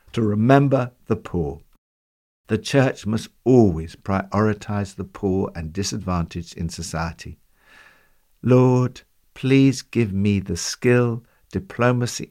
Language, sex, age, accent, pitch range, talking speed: English, male, 60-79, British, 95-150 Hz, 105 wpm